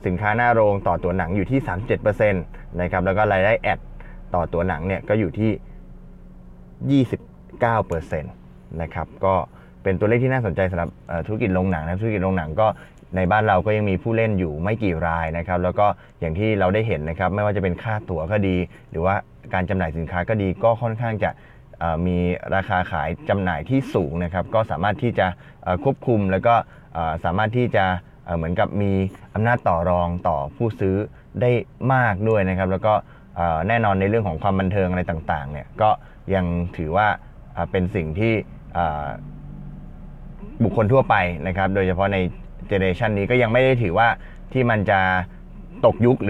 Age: 20-39